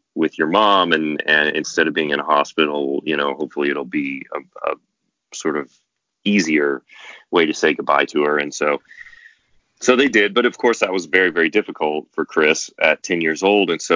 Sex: male